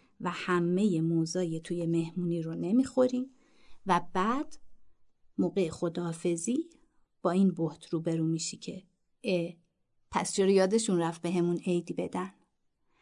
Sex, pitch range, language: female, 170-225 Hz, Persian